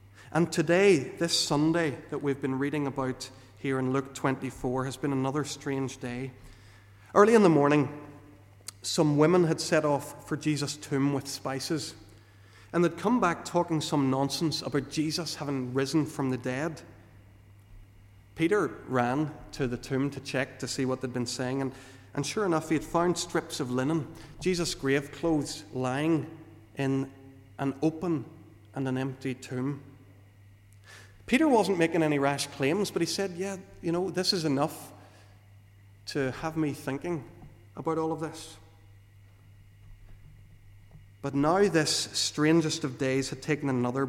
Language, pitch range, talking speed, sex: English, 105-155 Hz, 150 wpm, male